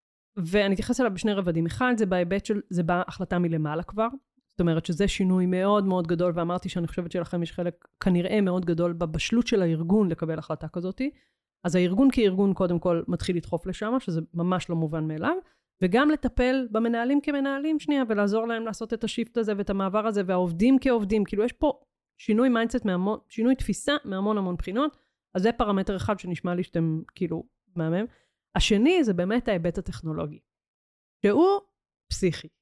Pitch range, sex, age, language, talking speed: 180-225 Hz, female, 30-49, Hebrew, 150 wpm